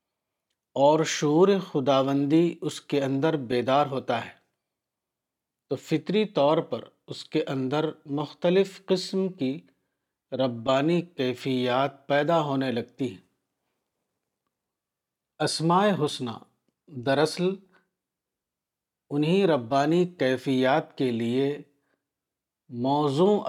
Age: 50-69